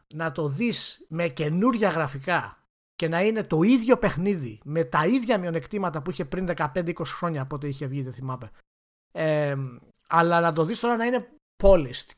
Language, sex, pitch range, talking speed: Greek, male, 145-195 Hz, 170 wpm